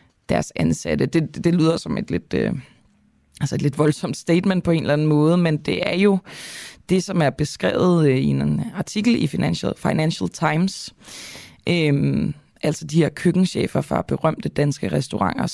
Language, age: Danish, 20-39